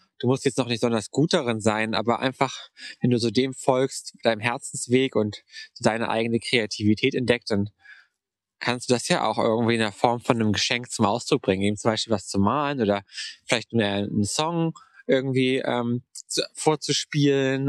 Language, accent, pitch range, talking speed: German, German, 115-140 Hz, 180 wpm